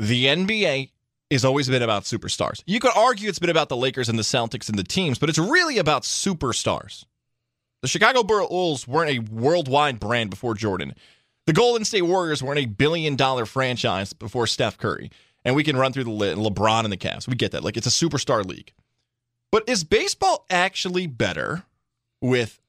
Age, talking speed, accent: 20-39, 185 wpm, American